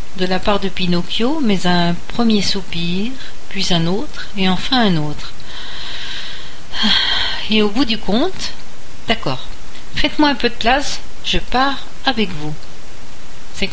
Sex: female